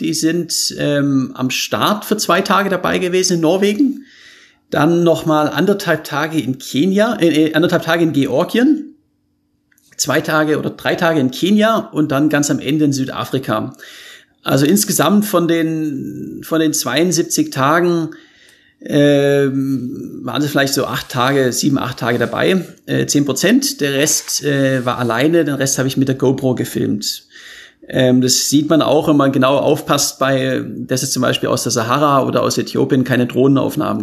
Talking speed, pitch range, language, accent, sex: 165 wpm, 125-165 Hz, German, German, male